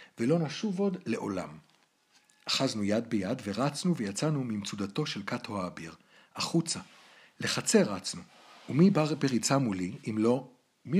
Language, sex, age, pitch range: Hebrew, male, 60-79, 100-155 Hz